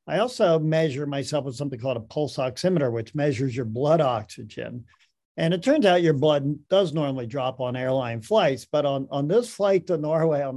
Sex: male